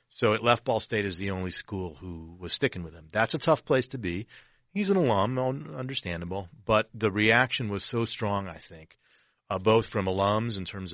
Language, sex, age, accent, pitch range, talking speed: English, male, 40-59, American, 90-110 Hz, 210 wpm